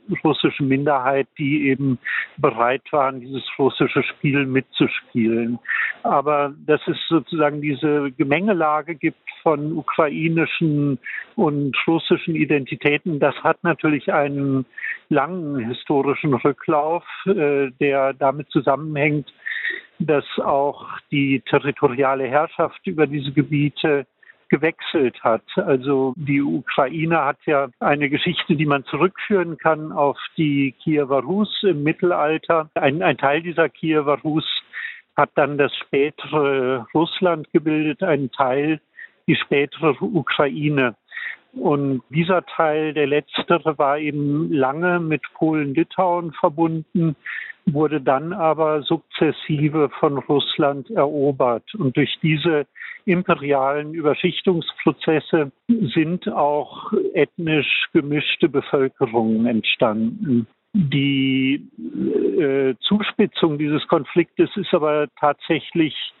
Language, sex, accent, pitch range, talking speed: German, male, German, 140-165 Hz, 100 wpm